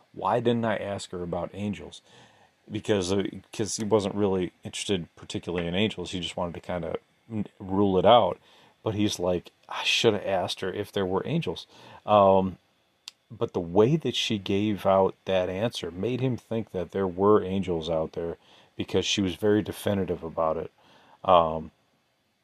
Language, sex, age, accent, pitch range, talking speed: English, male, 40-59, American, 90-110 Hz, 170 wpm